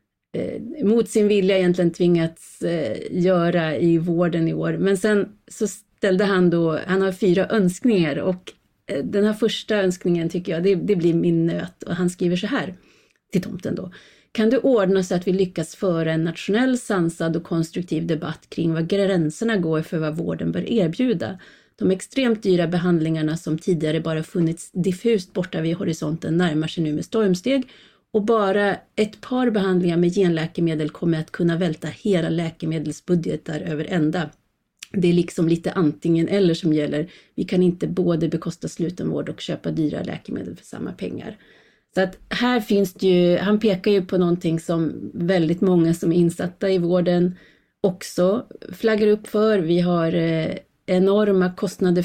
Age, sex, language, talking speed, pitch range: 30-49, female, Swedish, 165 wpm, 165-195 Hz